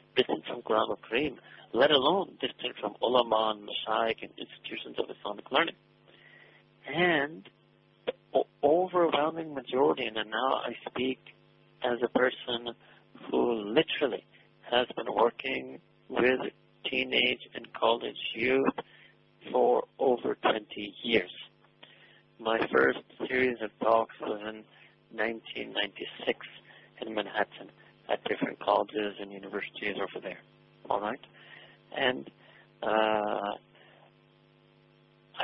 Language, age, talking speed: English, 50-69, 105 wpm